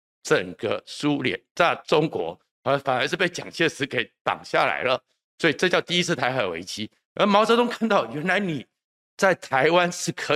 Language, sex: Chinese, male